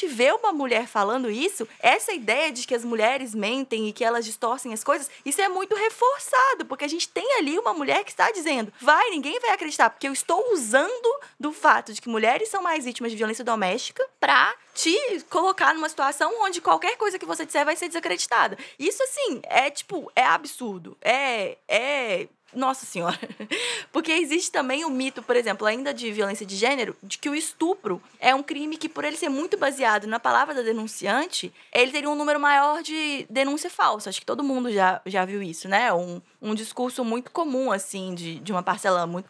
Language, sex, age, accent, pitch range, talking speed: English, female, 20-39, Brazilian, 220-310 Hz, 200 wpm